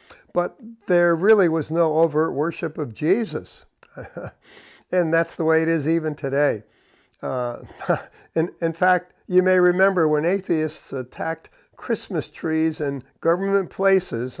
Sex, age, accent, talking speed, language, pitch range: male, 60-79, American, 135 wpm, English, 150-185 Hz